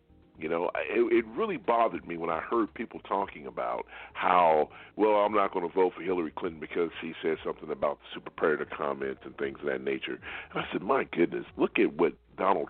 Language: English